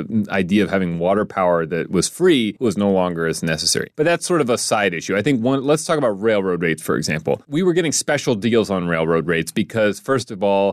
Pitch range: 100-140 Hz